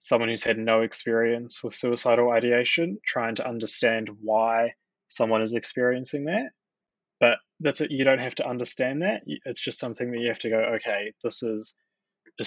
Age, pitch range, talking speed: 20-39, 115-130 Hz, 180 wpm